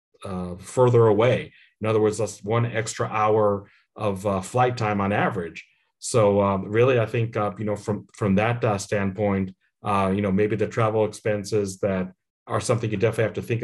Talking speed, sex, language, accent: 195 wpm, male, English, American